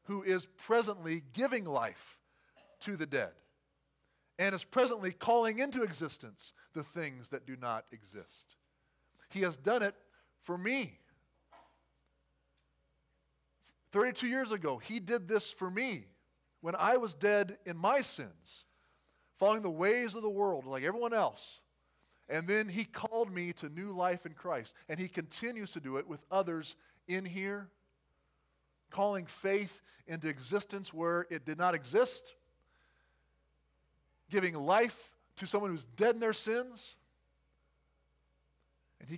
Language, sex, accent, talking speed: English, male, American, 140 wpm